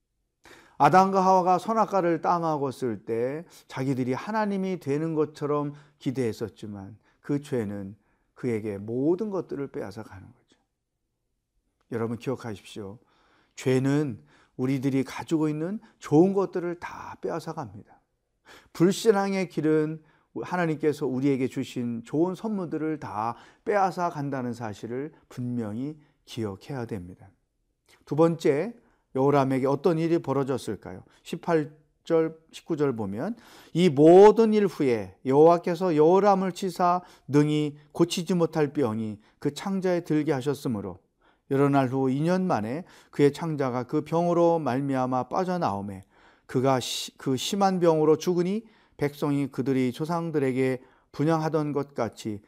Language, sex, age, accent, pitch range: Korean, male, 40-59, native, 125-170 Hz